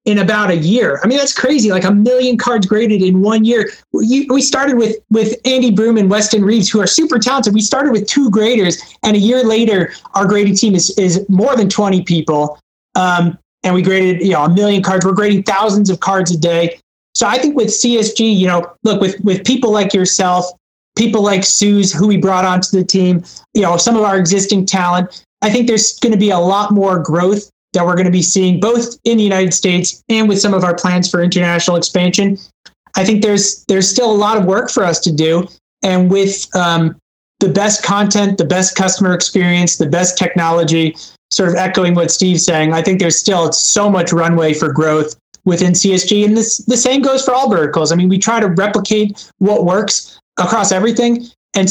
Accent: American